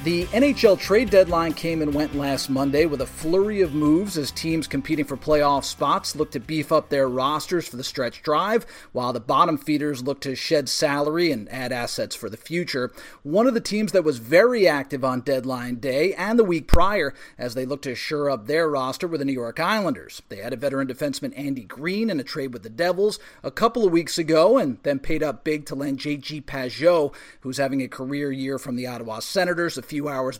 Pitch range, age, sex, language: 135-175 Hz, 30-49, male, English